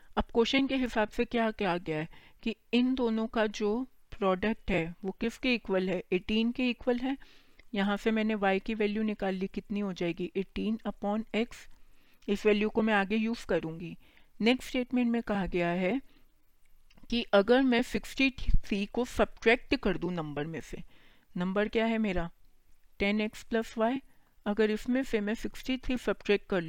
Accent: native